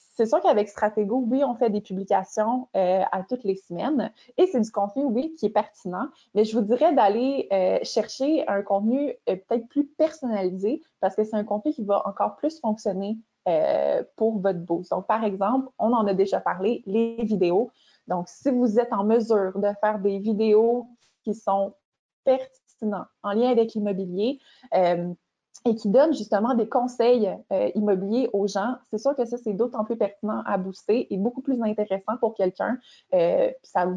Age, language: 20-39, French